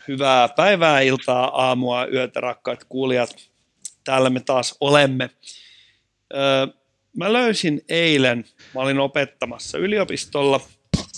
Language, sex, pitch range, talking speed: Finnish, male, 125-145 Hz, 100 wpm